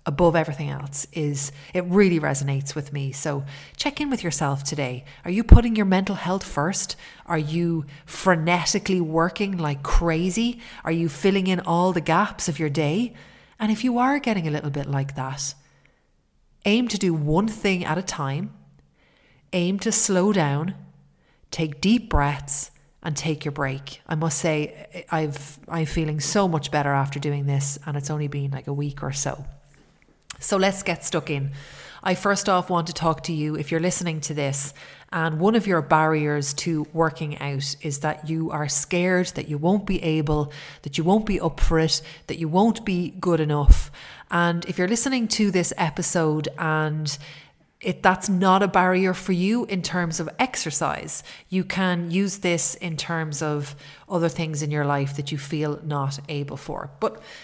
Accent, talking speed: Irish, 180 wpm